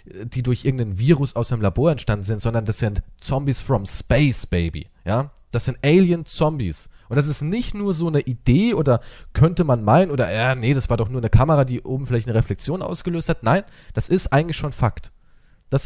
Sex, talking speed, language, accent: male, 205 wpm, German, German